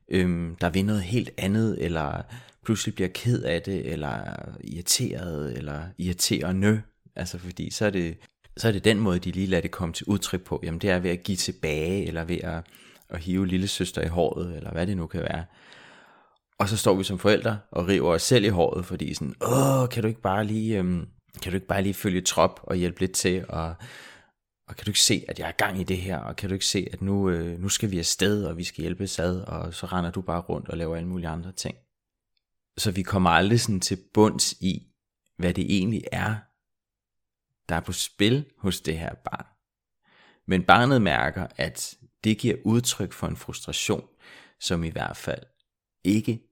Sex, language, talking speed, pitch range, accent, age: male, Danish, 210 wpm, 85-105 Hz, native, 30-49